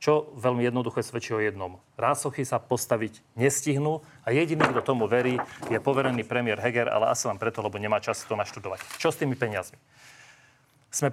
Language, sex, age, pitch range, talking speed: Slovak, male, 40-59, 120-140 Hz, 175 wpm